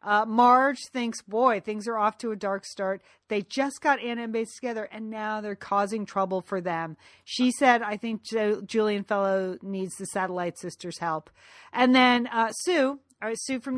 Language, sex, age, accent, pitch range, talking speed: English, female, 40-59, American, 190-240 Hz, 185 wpm